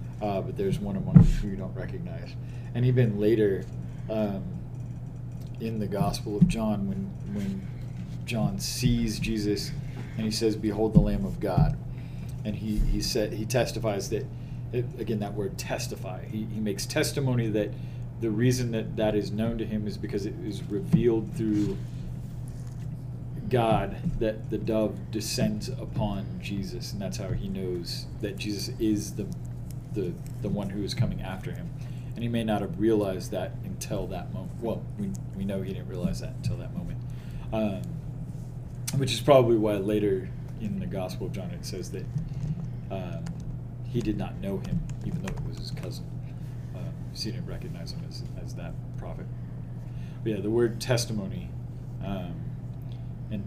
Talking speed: 170 wpm